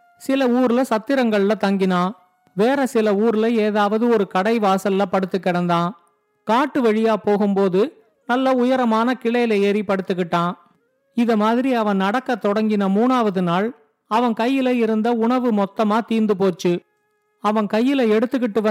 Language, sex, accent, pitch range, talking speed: Tamil, male, native, 200-245 Hz, 75 wpm